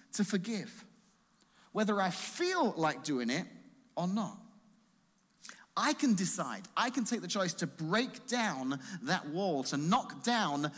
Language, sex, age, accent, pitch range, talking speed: English, male, 40-59, British, 155-215 Hz, 145 wpm